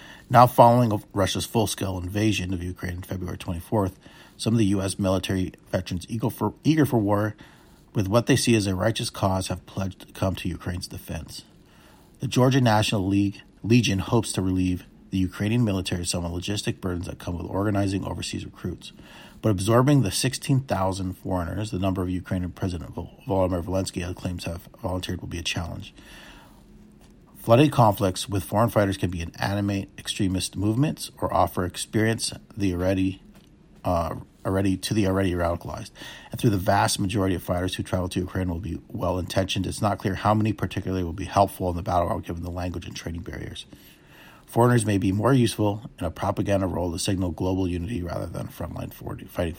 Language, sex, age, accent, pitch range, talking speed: English, male, 40-59, American, 90-110 Hz, 185 wpm